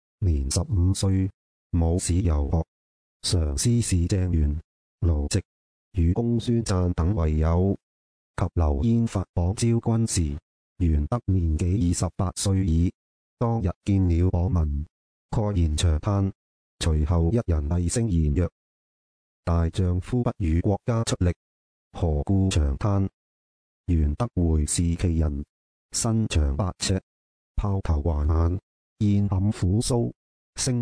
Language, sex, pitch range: Chinese, male, 75-100 Hz